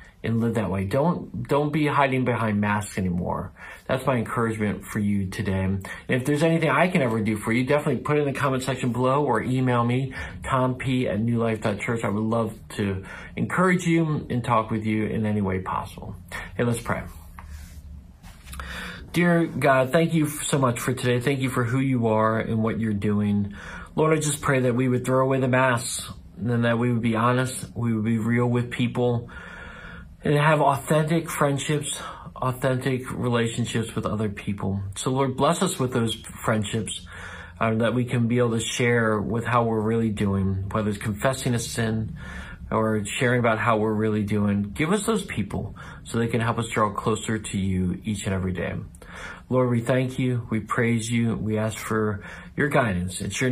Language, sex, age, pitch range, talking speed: English, male, 40-59, 100-130 Hz, 190 wpm